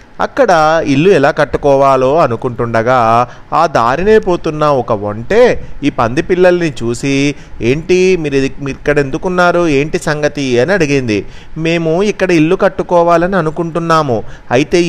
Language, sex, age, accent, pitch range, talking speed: Telugu, male, 30-49, native, 120-175 Hz, 110 wpm